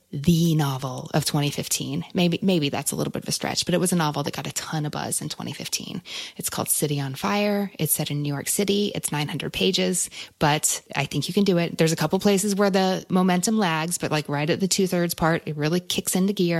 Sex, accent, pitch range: female, American, 150-185 Hz